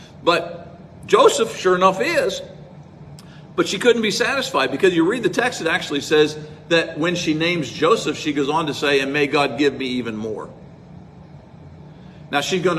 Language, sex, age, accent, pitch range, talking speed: English, male, 50-69, American, 155-230 Hz, 180 wpm